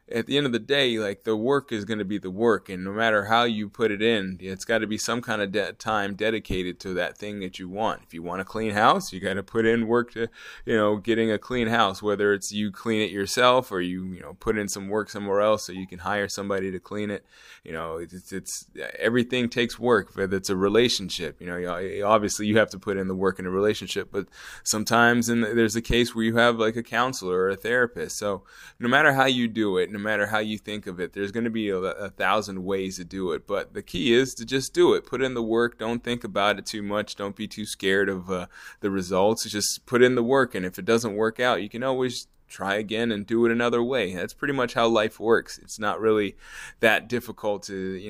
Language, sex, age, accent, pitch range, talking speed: English, male, 20-39, American, 95-115 Hz, 250 wpm